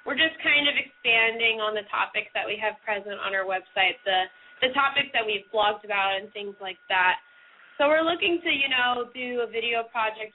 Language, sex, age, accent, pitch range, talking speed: English, female, 10-29, American, 210-285 Hz, 210 wpm